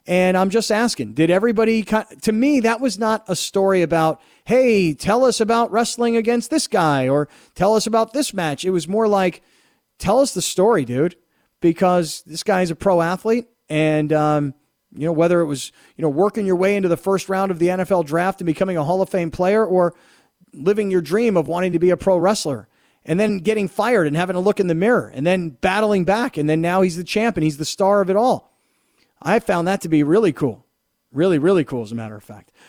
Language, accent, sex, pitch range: English, American, male, 165-215 Hz